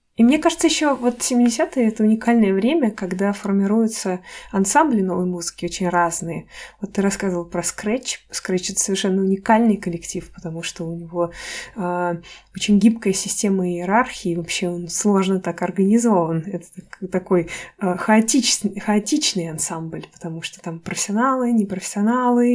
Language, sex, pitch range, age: Russian, female, 180-215 Hz, 20-39